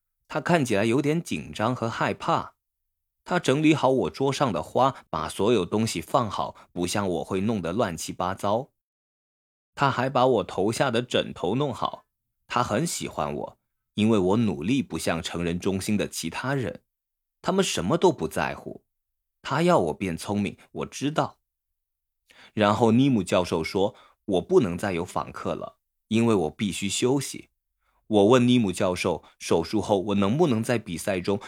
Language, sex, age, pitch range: Chinese, male, 20-39, 80-120 Hz